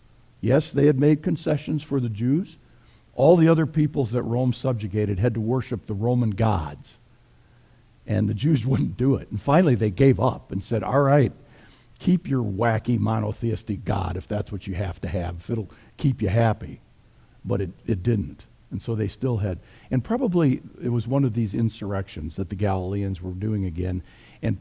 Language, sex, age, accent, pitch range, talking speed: English, male, 50-69, American, 100-135 Hz, 190 wpm